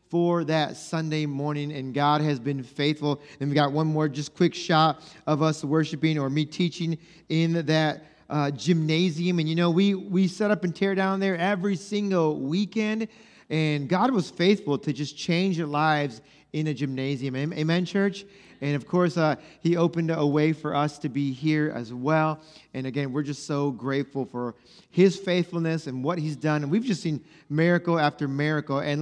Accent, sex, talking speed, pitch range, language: American, male, 190 wpm, 150-195 Hz, English